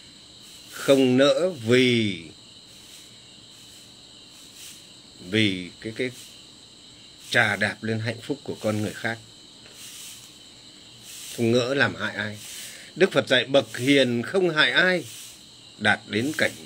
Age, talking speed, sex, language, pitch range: 30-49, 110 wpm, male, Vietnamese, 110-145 Hz